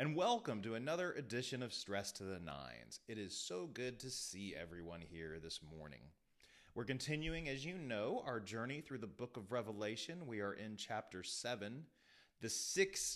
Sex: male